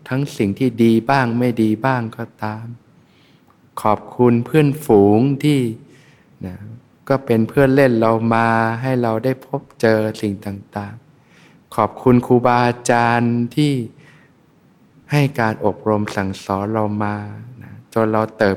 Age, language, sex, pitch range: 20-39, Thai, male, 105-130 Hz